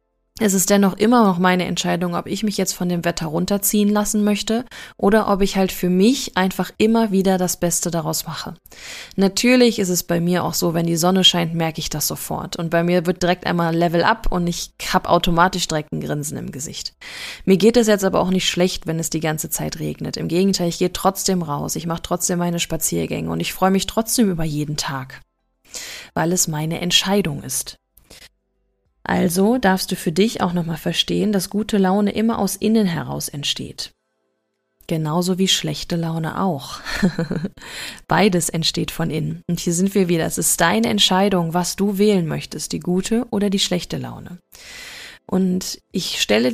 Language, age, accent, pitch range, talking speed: German, 20-39, German, 165-200 Hz, 190 wpm